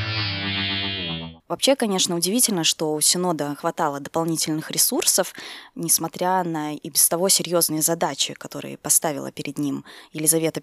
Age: 20-39